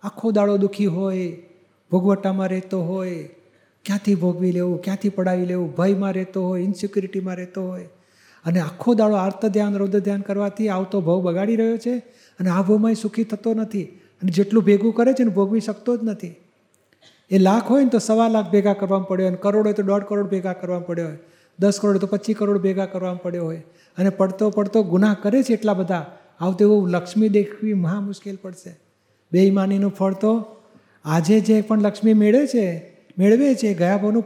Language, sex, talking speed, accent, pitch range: Gujarati, male, 175 wpm, native, 185-215 Hz